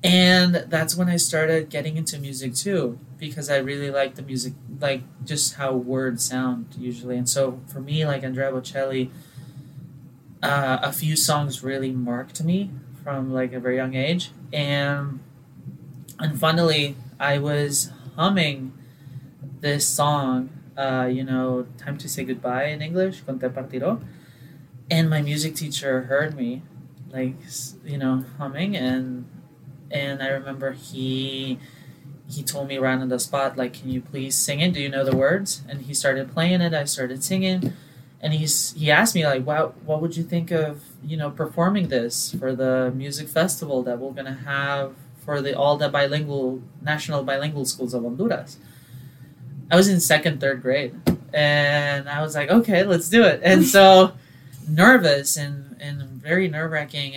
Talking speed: 165 wpm